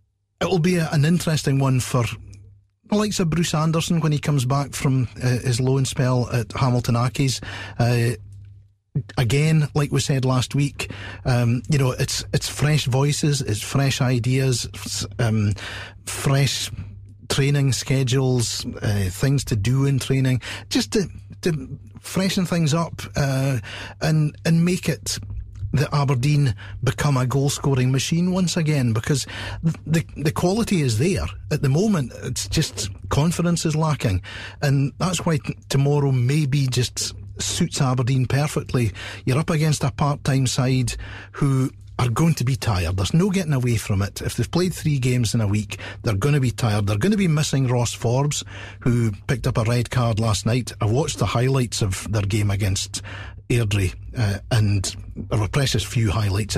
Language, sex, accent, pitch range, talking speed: English, male, British, 105-140 Hz, 165 wpm